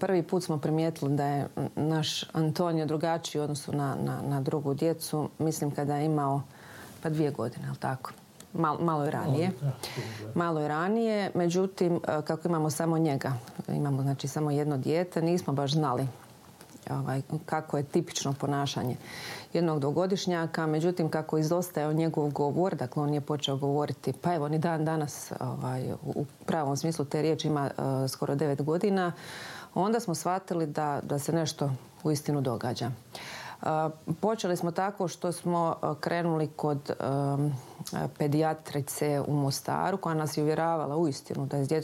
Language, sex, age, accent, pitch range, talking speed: Croatian, female, 30-49, native, 140-170 Hz, 155 wpm